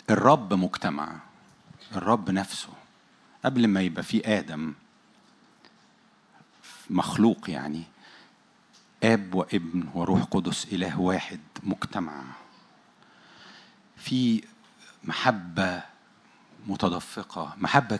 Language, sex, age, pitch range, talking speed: Arabic, male, 50-69, 90-110 Hz, 75 wpm